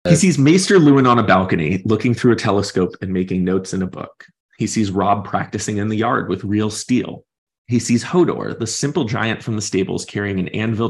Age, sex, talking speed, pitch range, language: 30-49, male, 215 wpm, 95-120 Hz, English